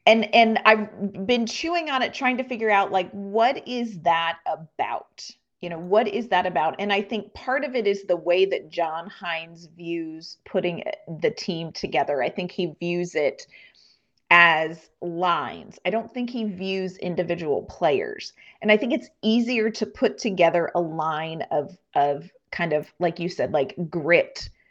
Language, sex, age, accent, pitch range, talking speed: English, female, 30-49, American, 175-220 Hz, 175 wpm